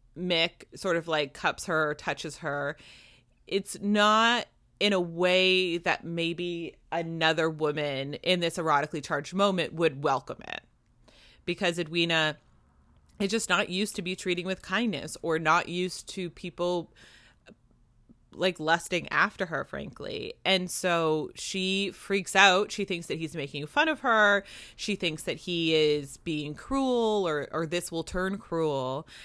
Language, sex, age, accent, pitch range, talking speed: English, female, 30-49, American, 155-205 Hz, 150 wpm